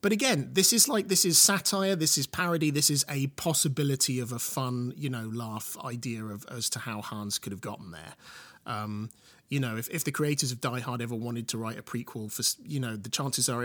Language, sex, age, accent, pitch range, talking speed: English, male, 30-49, British, 105-140 Hz, 235 wpm